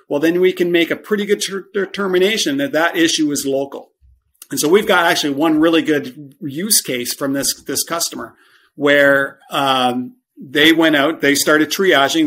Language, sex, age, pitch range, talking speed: English, male, 40-59, 140-180 Hz, 180 wpm